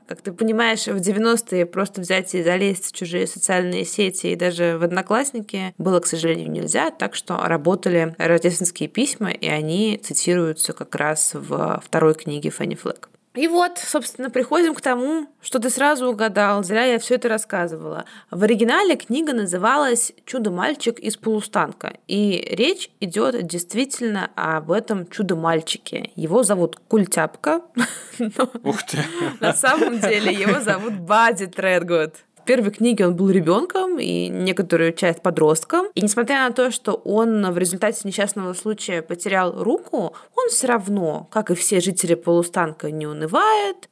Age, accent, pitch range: 20-39, native, 170-230 Hz